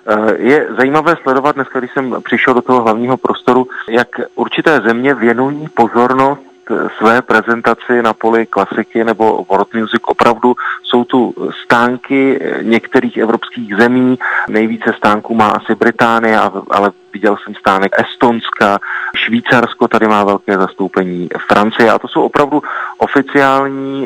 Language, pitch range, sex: Czech, 105-125 Hz, male